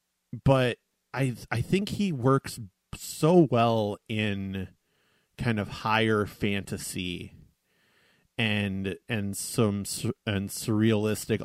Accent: American